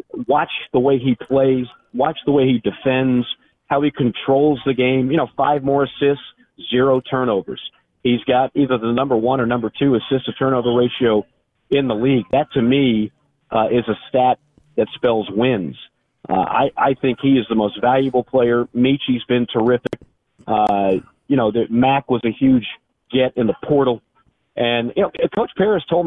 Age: 40-59